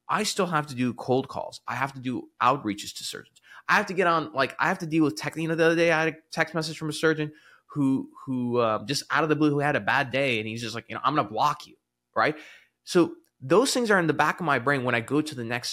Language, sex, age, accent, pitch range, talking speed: English, male, 20-39, American, 120-160 Hz, 300 wpm